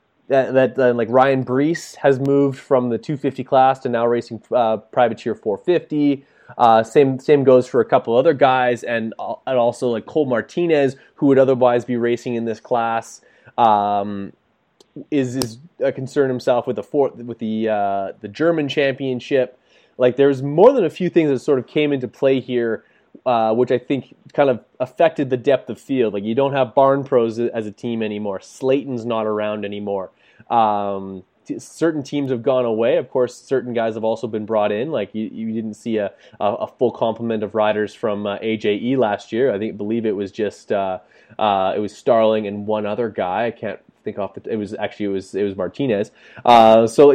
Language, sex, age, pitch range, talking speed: English, male, 20-39, 110-135 Hz, 200 wpm